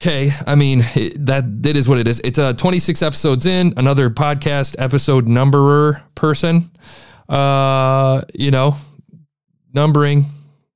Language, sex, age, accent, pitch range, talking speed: English, male, 30-49, American, 110-145 Hz, 130 wpm